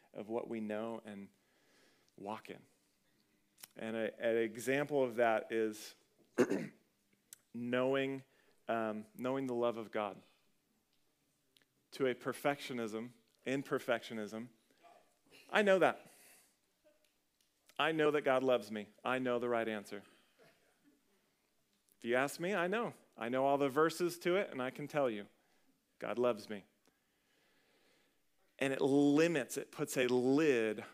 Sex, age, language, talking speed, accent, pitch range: male, 40-59, English, 130 wpm, American, 110-135 Hz